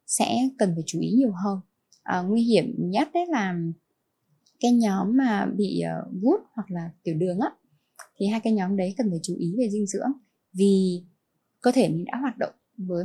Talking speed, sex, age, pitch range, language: 200 wpm, female, 10-29, 175-225 Hz, Vietnamese